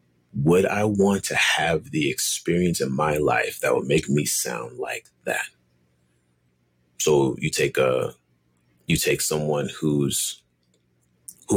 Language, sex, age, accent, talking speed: English, male, 30-49, American, 135 wpm